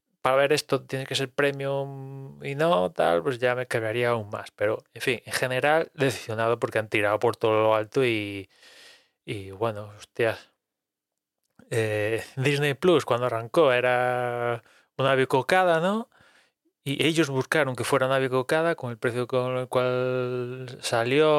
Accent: Spanish